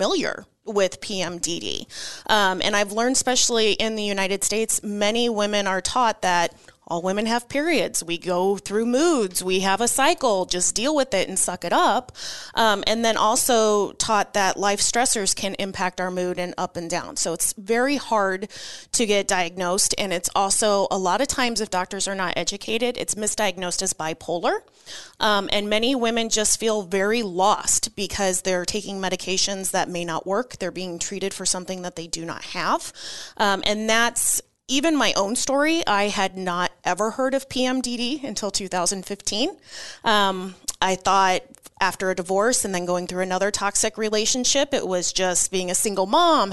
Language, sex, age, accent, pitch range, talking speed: English, female, 20-39, American, 185-235 Hz, 180 wpm